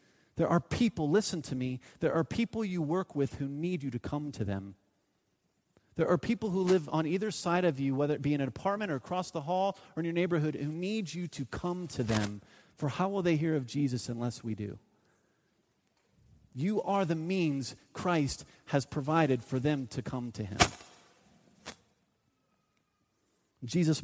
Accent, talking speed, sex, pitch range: American, 185 wpm, male, 145-205 Hz